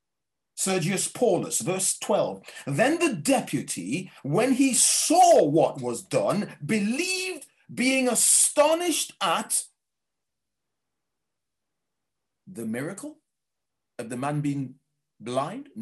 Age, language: 40-59, English